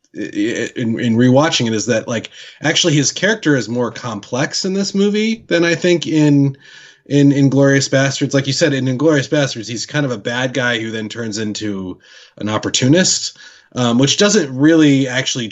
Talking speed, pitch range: 180 wpm, 115-145 Hz